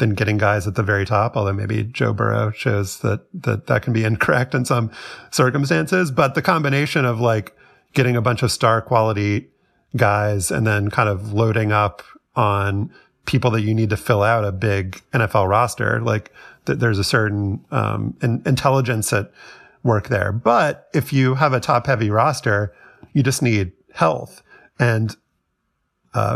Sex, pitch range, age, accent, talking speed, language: male, 110-135 Hz, 30-49, American, 175 wpm, English